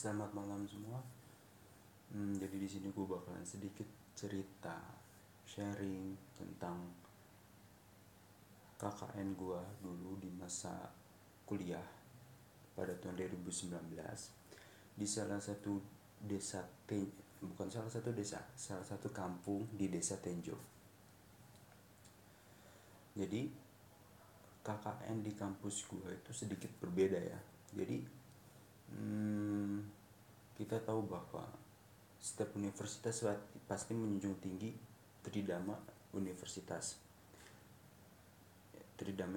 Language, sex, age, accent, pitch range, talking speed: Indonesian, male, 30-49, native, 95-105 Hz, 90 wpm